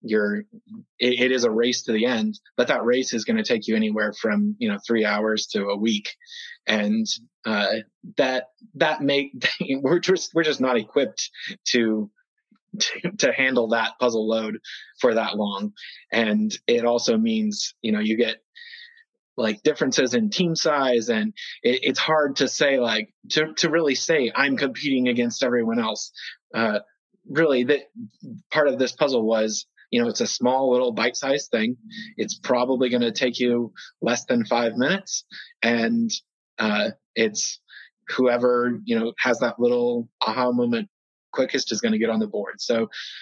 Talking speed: 170 wpm